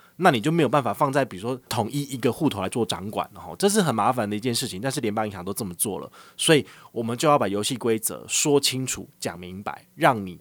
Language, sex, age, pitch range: Chinese, male, 30-49, 105-140 Hz